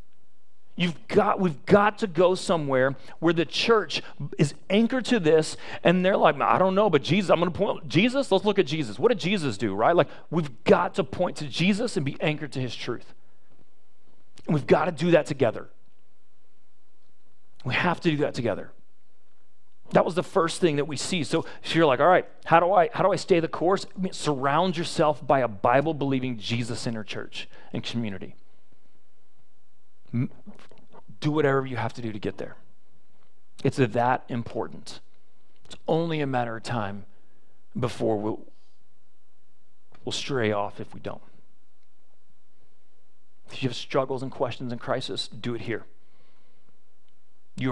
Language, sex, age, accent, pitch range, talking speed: English, male, 30-49, American, 120-175 Hz, 165 wpm